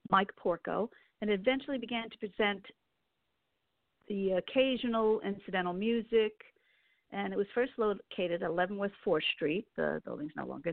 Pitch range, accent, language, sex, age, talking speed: 190-245 Hz, American, English, female, 50-69, 140 wpm